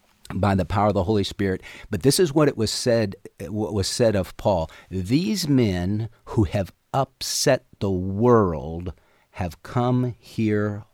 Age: 50-69